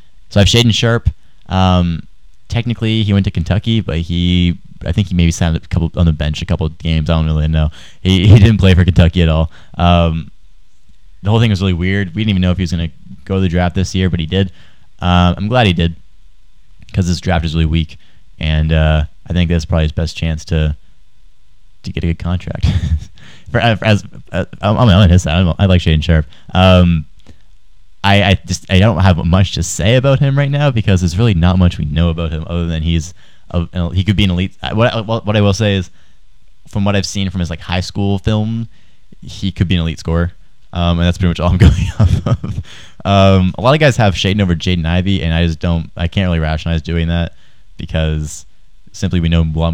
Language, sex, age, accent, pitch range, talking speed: English, male, 20-39, American, 85-100 Hz, 235 wpm